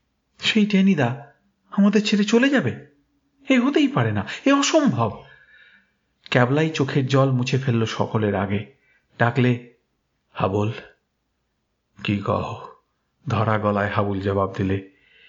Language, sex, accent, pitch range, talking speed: Bengali, male, native, 110-175 Hz, 110 wpm